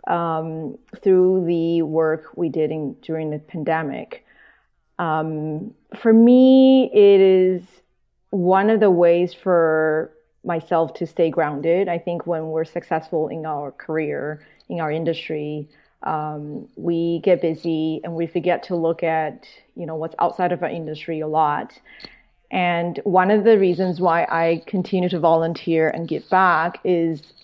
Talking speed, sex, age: 150 wpm, female, 30-49